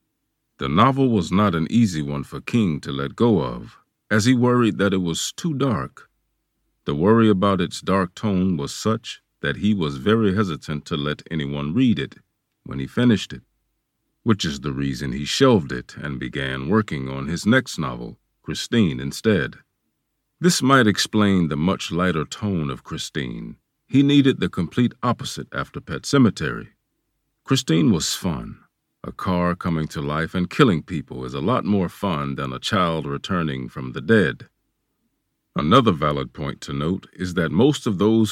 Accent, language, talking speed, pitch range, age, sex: American, English, 170 wpm, 75-110 Hz, 40-59, male